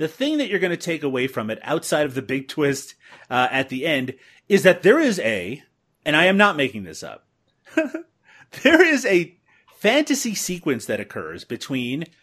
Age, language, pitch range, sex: 30-49, English, 120-175 Hz, male